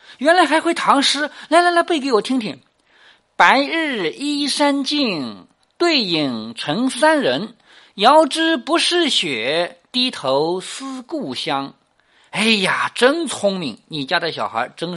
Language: Japanese